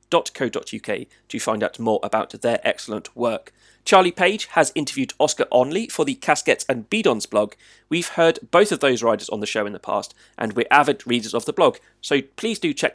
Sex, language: male, English